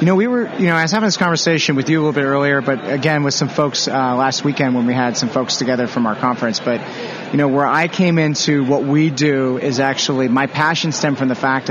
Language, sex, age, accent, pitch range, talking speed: English, male, 30-49, American, 125-155 Hz, 265 wpm